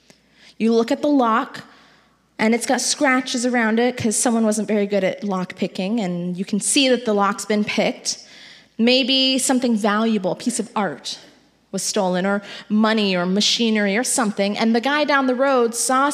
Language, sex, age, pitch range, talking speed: English, female, 20-39, 215-280 Hz, 185 wpm